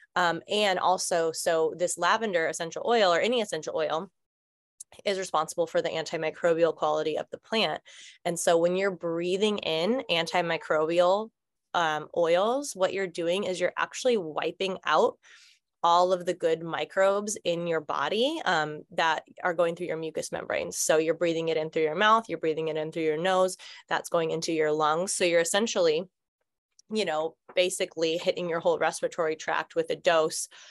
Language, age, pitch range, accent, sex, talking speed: English, 20-39, 160-190 Hz, American, female, 170 wpm